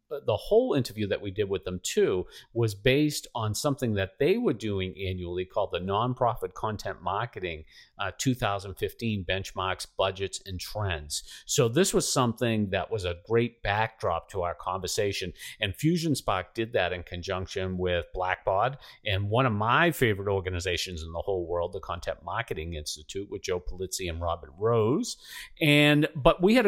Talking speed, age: 165 wpm, 50-69